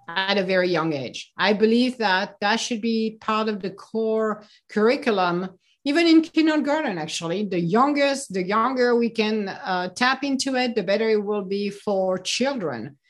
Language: English